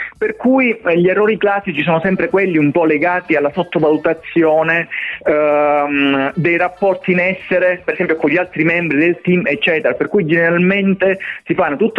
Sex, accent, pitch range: male, native, 145-175 Hz